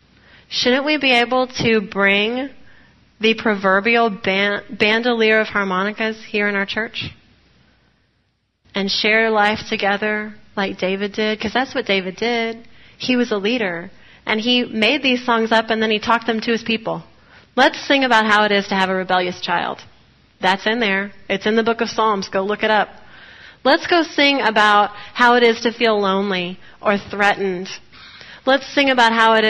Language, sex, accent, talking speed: English, female, American, 175 wpm